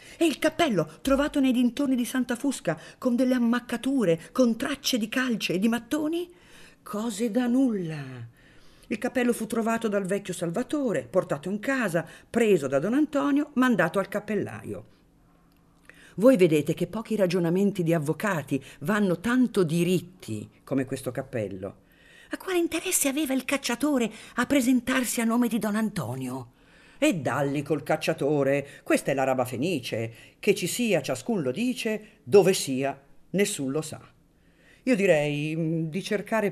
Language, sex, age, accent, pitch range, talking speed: Italian, female, 50-69, native, 145-240 Hz, 145 wpm